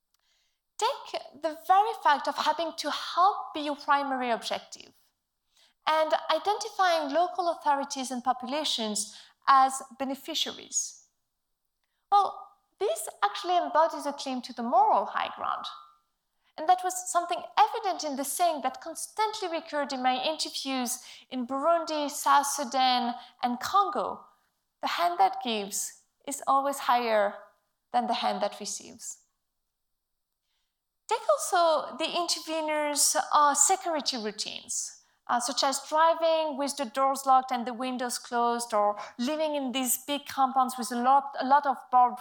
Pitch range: 250-340 Hz